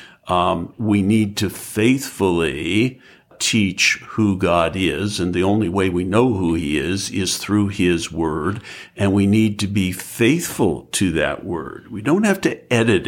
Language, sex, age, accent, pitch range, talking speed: English, male, 60-79, American, 95-110 Hz, 165 wpm